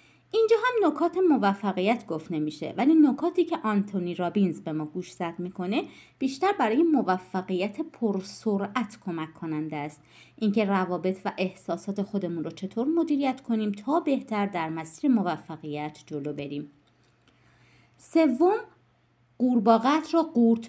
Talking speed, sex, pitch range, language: 125 wpm, female, 175-270 Hz, Persian